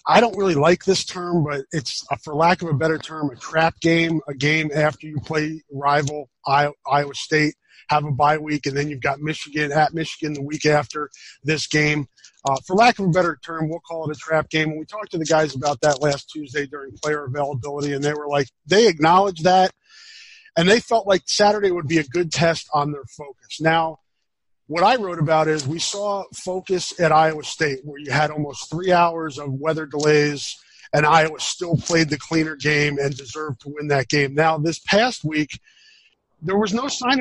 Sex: male